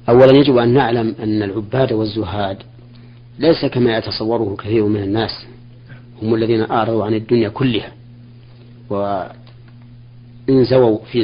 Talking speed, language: 110 wpm, Arabic